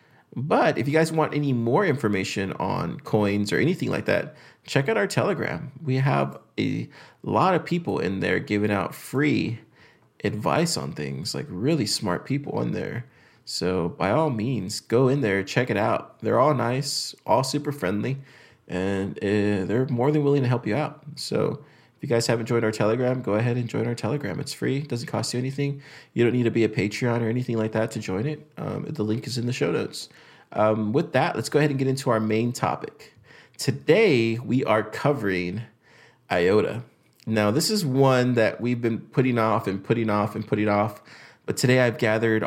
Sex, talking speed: male, 200 wpm